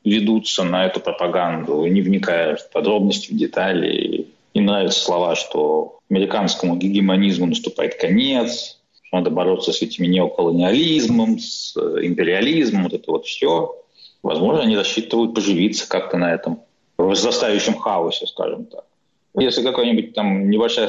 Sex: male